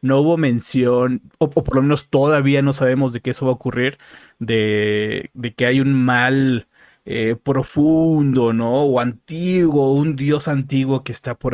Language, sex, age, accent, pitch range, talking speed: Spanish, male, 30-49, Mexican, 125-150 Hz, 175 wpm